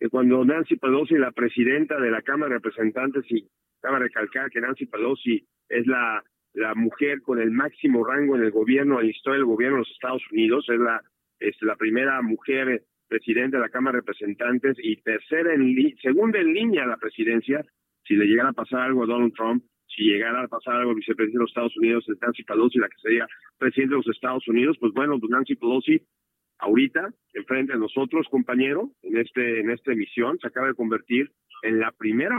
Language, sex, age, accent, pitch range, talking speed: Spanish, male, 50-69, Mexican, 115-150 Hz, 205 wpm